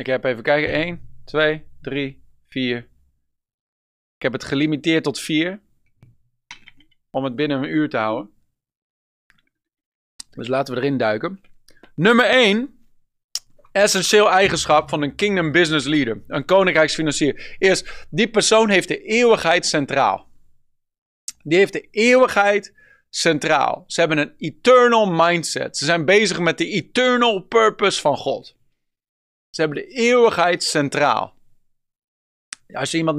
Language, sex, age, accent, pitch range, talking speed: Dutch, male, 40-59, Dutch, 140-180 Hz, 130 wpm